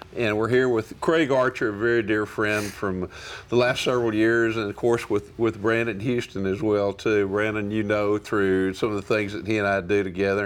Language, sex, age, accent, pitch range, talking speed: English, male, 50-69, American, 105-120 Hz, 225 wpm